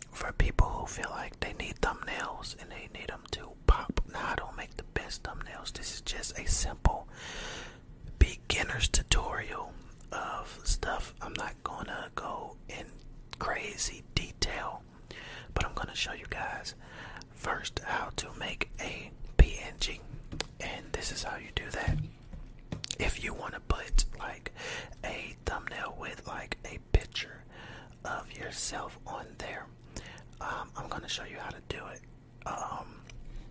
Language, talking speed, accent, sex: English, 145 wpm, American, male